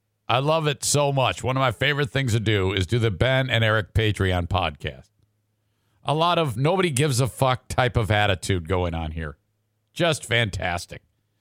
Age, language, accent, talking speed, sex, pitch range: 50-69, English, American, 185 wpm, male, 105-145 Hz